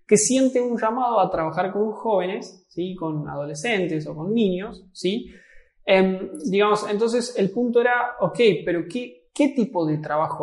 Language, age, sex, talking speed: Spanish, 20-39, male, 145 wpm